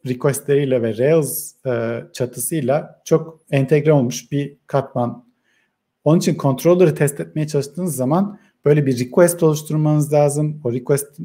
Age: 50-69